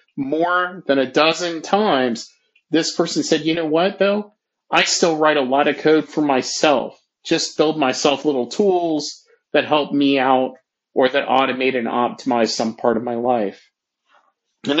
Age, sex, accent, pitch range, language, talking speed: 40-59, male, American, 120-150 Hz, English, 165 wpm